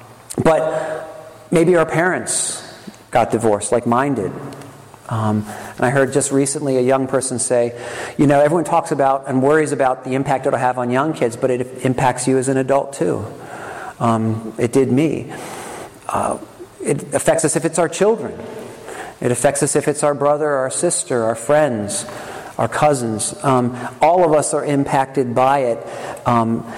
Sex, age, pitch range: male, 40-59, 120-145 Hz